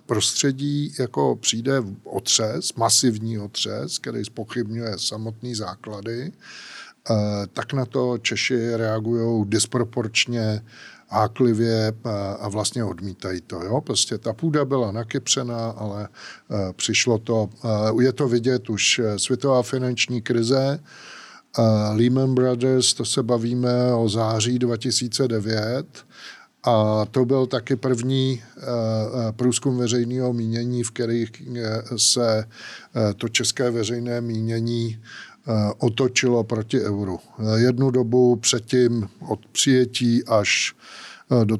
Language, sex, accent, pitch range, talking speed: Czech, male, native, 110-125 Hz, 110 wpm